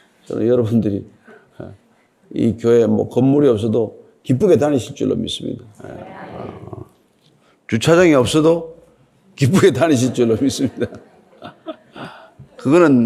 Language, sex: Korean, male